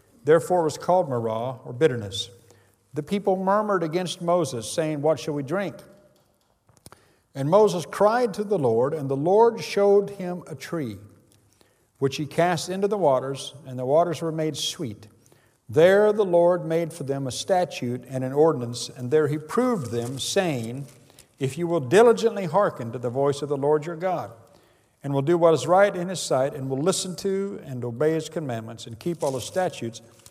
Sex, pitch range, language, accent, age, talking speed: male, 120-170 Hz, English, American, 50-69, 185 wpm